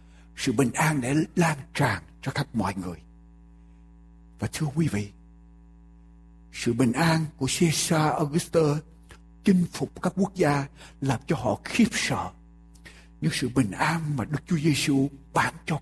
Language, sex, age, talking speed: Vietnamese, male, 60-79, 150 wpm